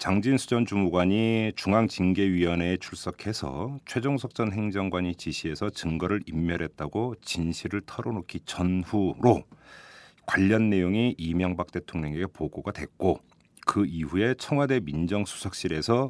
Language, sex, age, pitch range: Korean, male, 40-59, 85-120 Hz